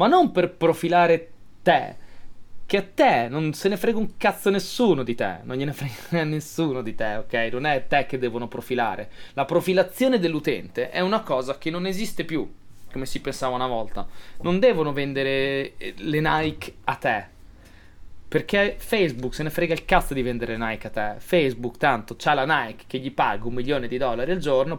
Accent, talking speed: native, 190 wpm